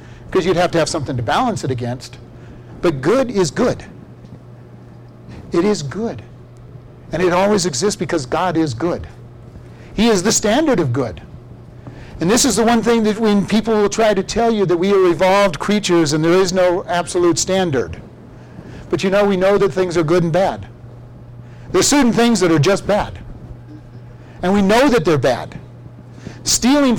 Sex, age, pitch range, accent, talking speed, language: male, 50-69, 130-195 Hz, American, 180 wpm, English